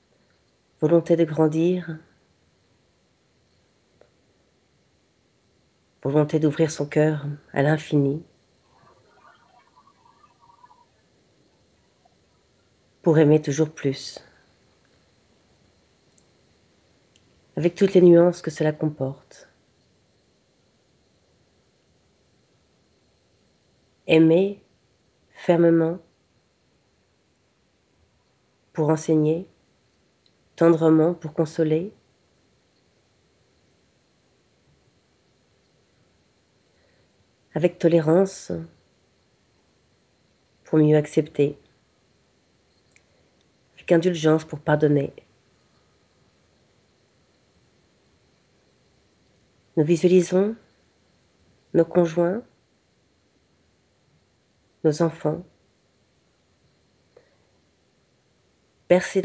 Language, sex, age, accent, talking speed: French, female, 40-59, French, 45 wpm